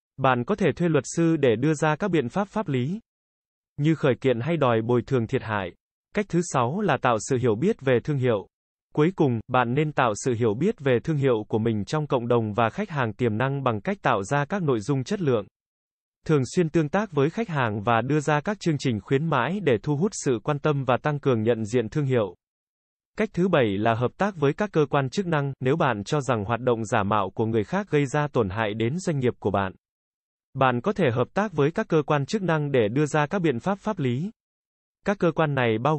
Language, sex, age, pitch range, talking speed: Vietnamese, male, 20-39, 120-155 Hz, 245 wpm